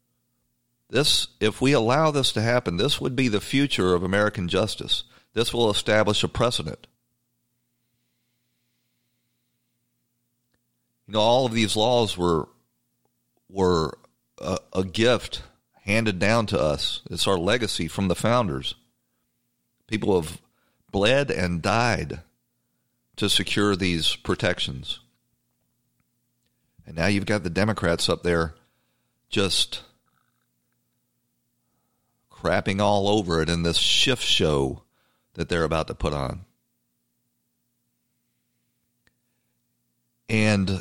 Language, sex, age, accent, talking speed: English, male, 40-59, American, 110 wpm